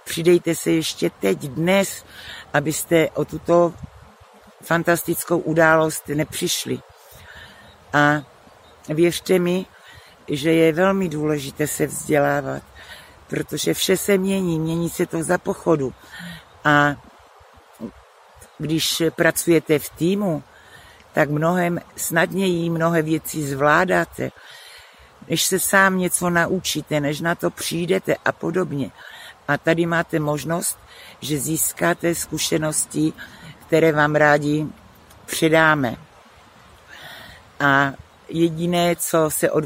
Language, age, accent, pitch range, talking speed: Czech, 60-79, native, 150-170 Hz, 100 wpm